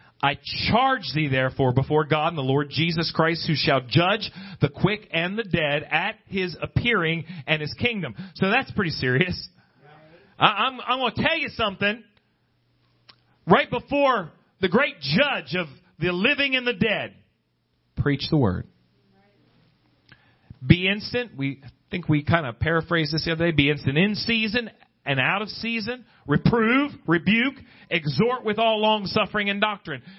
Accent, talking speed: American, 155 wpm